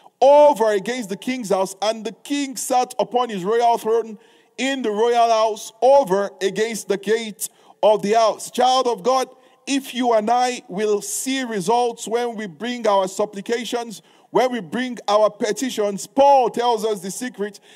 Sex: male